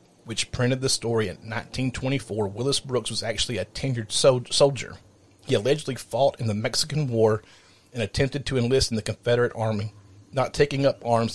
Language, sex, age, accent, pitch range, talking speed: English, male, 40-59, American, 105-135 Hz, 170 wpm